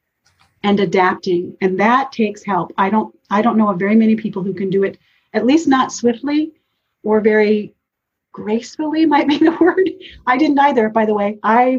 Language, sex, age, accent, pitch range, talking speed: English, female, 40-59, American, 200-240 Hz, 190 wpm